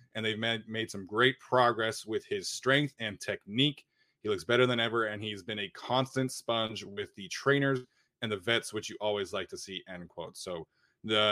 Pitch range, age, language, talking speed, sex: 105-130 Hz, 20-39, English, 205 wpm, male